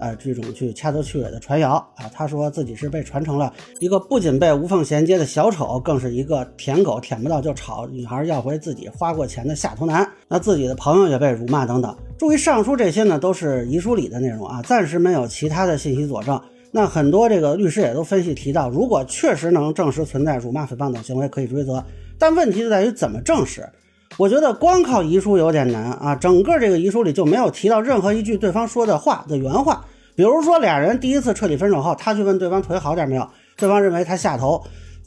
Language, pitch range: Chinese, 135-205 Hz